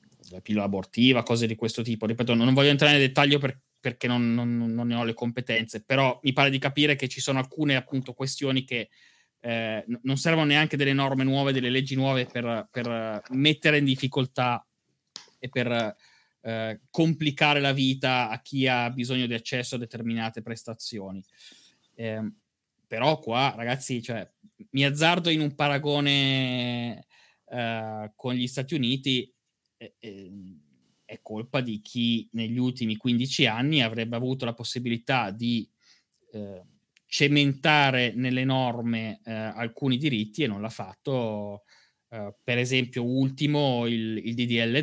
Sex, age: male, 20-39